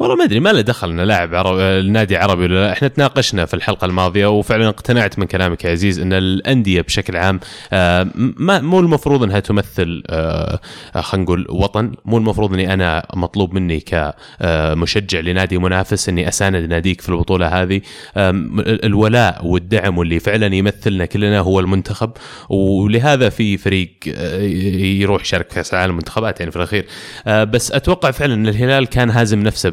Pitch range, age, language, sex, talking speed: 90-120 Hz, 20-39, Arabic, male, 145 wpm